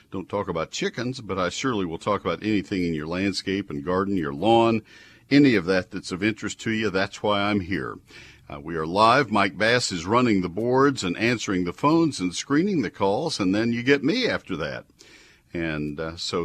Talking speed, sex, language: 210 wpm, male, English